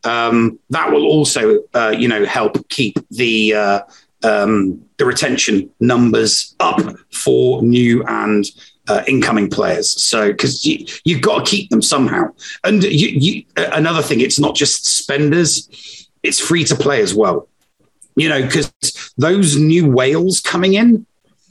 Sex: male